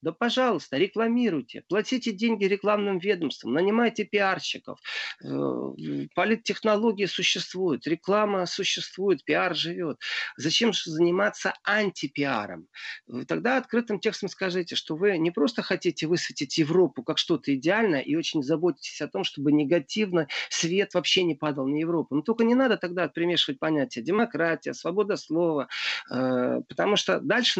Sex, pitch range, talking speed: male, 160-210 Hz, 130 wpm